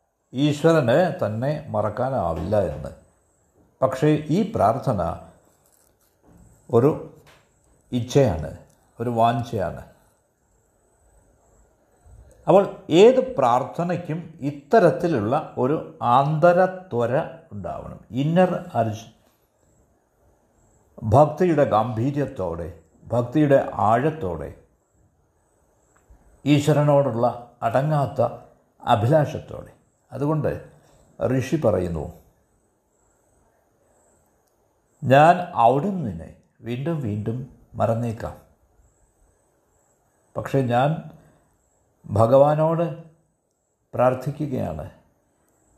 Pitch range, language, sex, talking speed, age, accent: 115-160 Hz, Malayalam, male, 50 wpm, 60-79, native